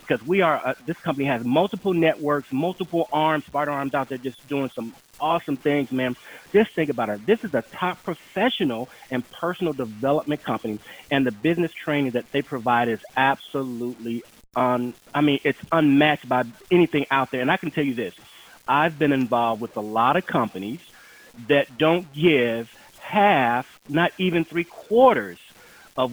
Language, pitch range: English, 130-175 Hz